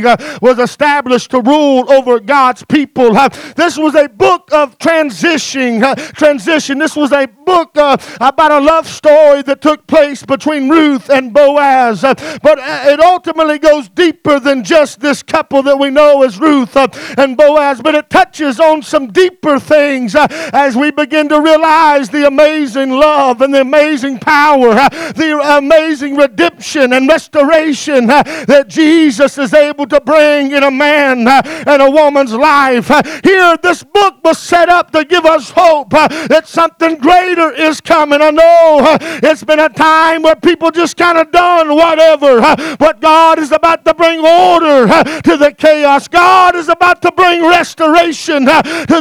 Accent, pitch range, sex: American, 285-330 Hz, male